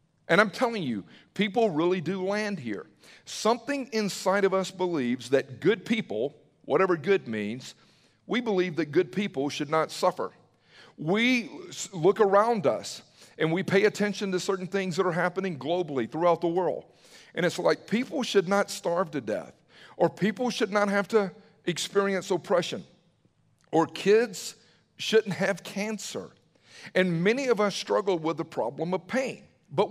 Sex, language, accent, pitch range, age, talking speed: male, English, American, 160-210 Hz, 50-69, 160 wpm